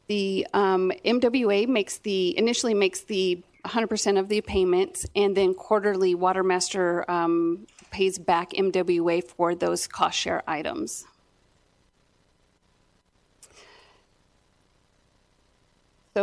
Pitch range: 185-205 Hz